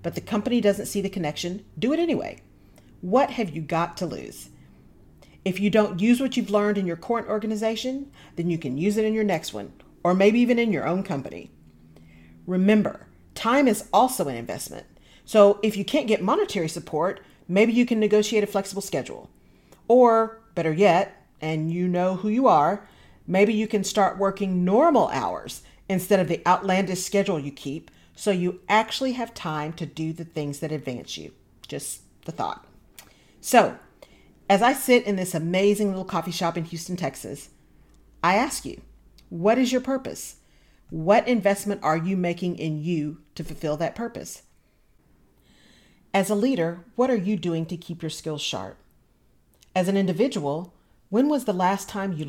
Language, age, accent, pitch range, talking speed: English, 40-59, American, 165-215 Hz, 175 wpm